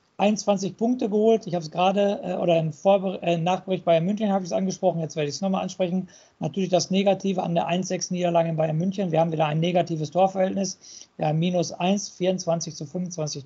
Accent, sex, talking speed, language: German, male, 215 wpm, German